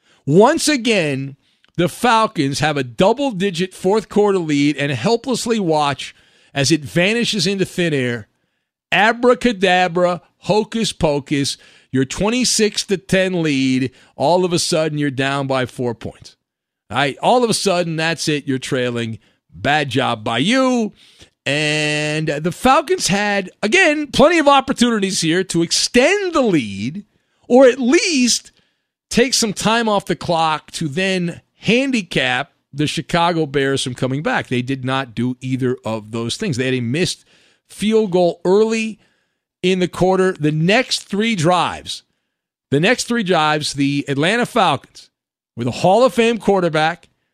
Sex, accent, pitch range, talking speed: male, American, 145-220 Hz, 140 wpm